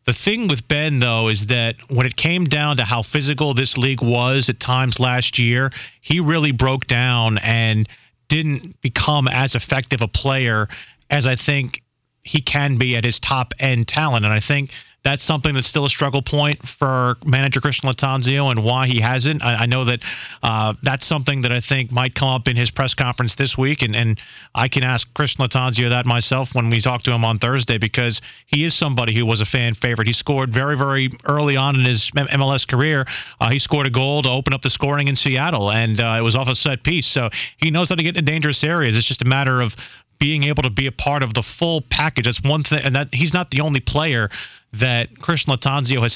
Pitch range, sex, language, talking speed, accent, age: 120-145 Hz, male, English, 225 wpm, American, 40-59